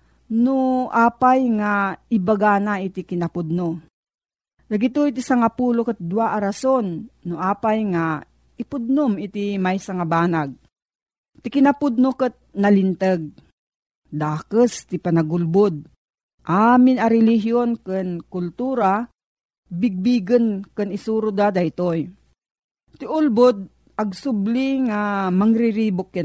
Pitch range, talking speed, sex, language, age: 190-255 Hz, 100 wpm, female, Filipino, 40-59